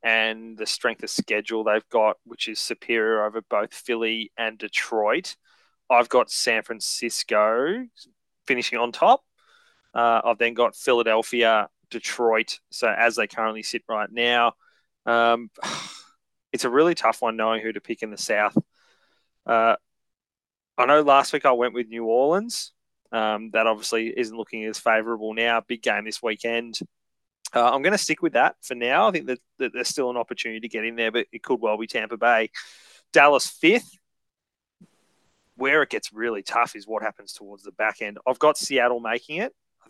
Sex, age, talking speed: male, 20-39, 175 wpm